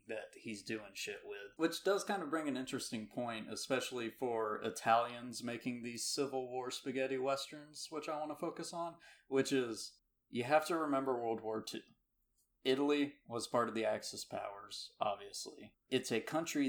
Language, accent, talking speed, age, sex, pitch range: English, American, 175 wpm, 30-49, male, 115-145 Hz